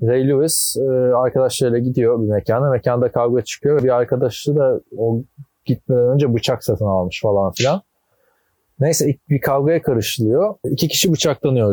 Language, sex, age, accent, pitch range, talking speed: Turkish, male, 40-59, native, 105-135 Hz, 140 wpm